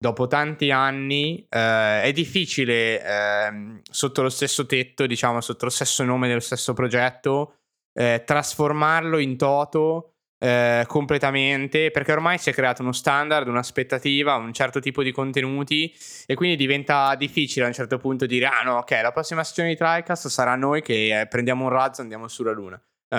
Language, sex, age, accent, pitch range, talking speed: Italian, male, 20-39, native, 120-145 Hz, 170 wpm